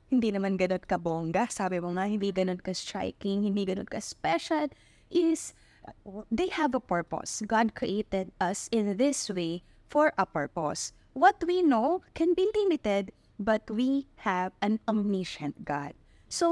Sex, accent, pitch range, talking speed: female, native, 195-270 Hz, 145 wpm